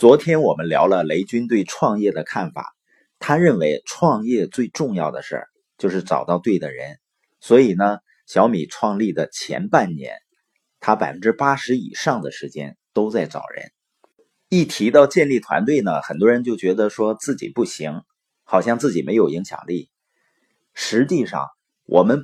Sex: male